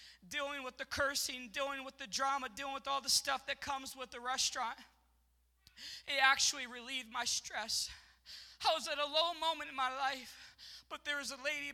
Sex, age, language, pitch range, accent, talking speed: male, 20-39, English, 270-315 Hz, American, 190 wpm